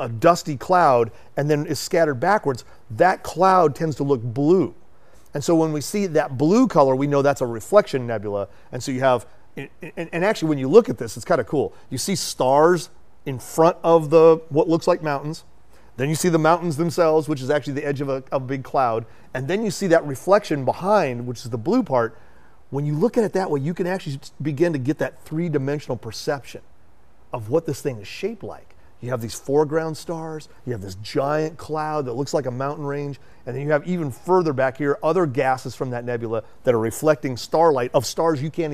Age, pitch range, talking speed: 40-59, 125-165 Hz, 220 wpm